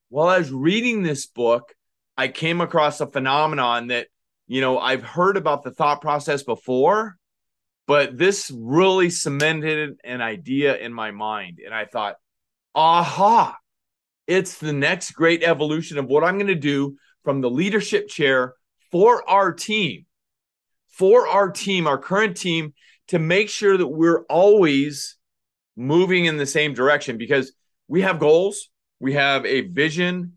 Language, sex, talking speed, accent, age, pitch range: English, male, 150 wpm, American, 30-49, 145-200 Hz